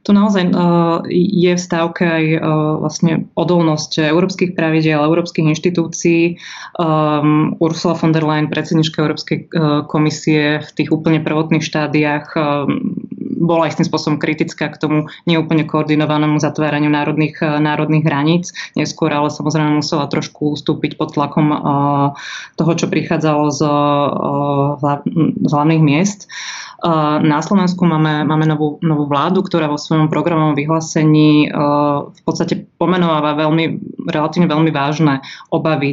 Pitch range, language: 150-170 Hz, Slovak